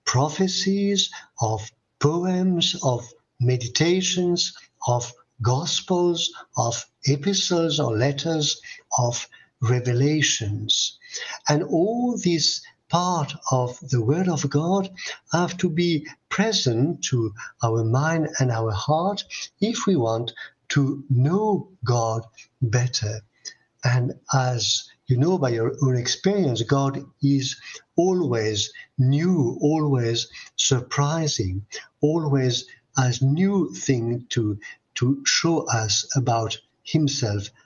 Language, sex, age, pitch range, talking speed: English, male, 60-79, 120-170 Hz, 100 wpm